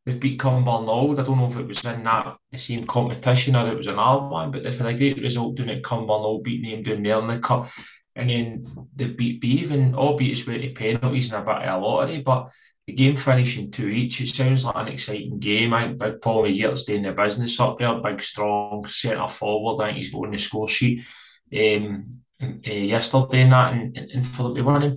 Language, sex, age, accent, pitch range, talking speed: English, male, 20-39, British, 105-130 Hz, 225 wpm